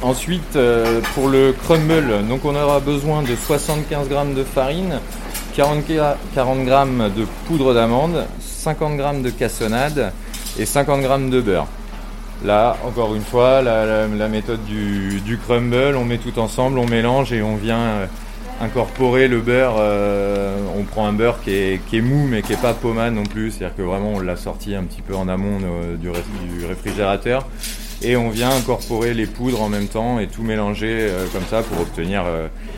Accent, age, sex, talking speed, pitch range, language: French, 20-39, male, 180 wpm, 100-125 Hz, French